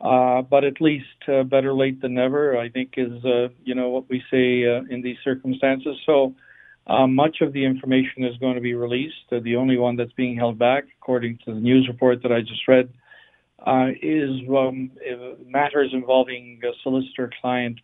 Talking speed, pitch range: 190 wpm, 125-140 Hz